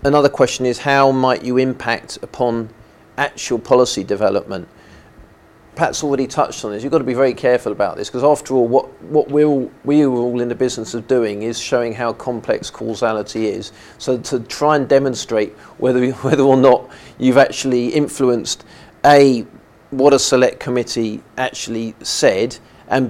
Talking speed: 165 wpm